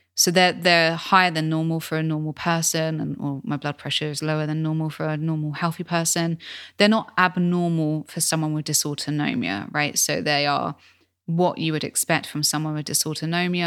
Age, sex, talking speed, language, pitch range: 20-39, female, 190 wpm, English, 150-175 Hz